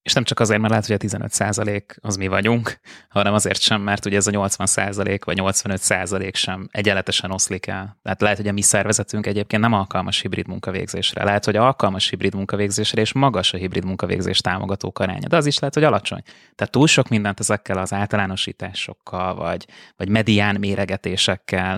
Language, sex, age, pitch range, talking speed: Hungarian, male, 20-39, 95-110 Hz, 180 wpm